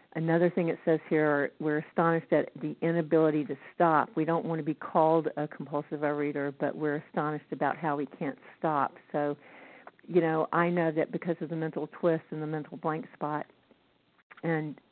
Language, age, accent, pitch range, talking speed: English, 50-69, American, 150-170 Hz, 185 wpm